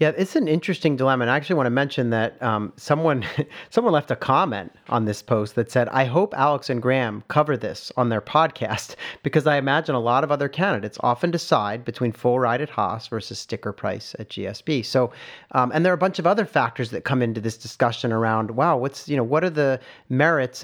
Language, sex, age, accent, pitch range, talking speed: English, male, 40-59, American, 115-145 Hz, 225 wpm